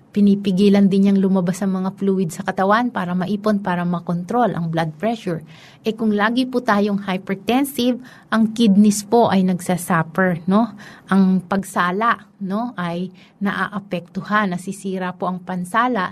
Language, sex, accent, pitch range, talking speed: Filipino, female, native, 180-215 Hz, 135 wpm